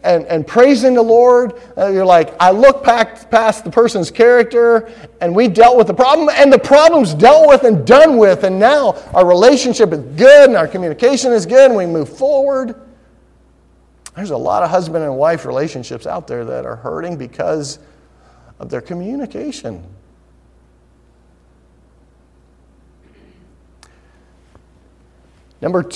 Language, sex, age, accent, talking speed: English, male, 40-59, American, 140 wpm